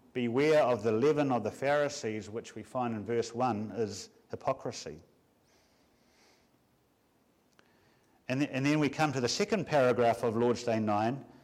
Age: 50-69